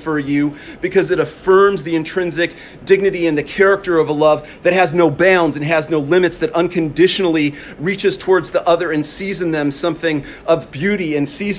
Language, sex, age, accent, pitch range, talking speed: English, male, 40-59, American, 160-190 Hz, 190 wpm